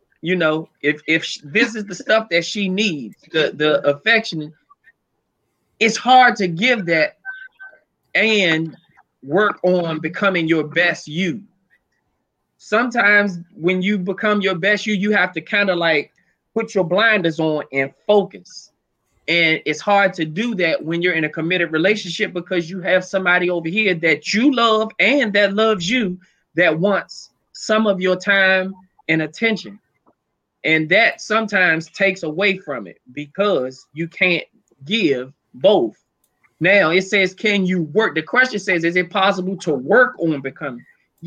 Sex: male